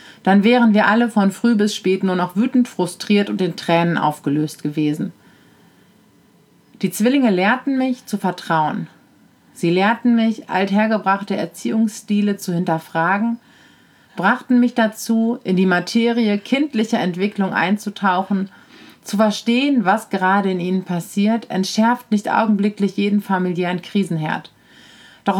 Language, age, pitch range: German, 40-59, 180-225 Hz